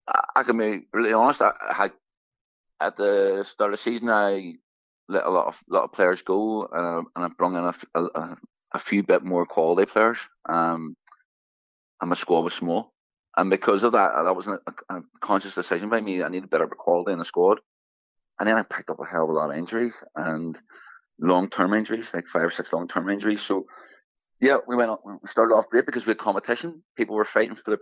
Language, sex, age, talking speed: English, male, 30-49, 225 wpm